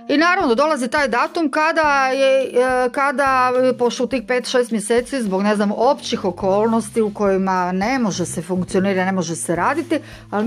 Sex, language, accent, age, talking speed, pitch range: female, Croatian, native, 40-59, 160 wpm, 185-255 Hz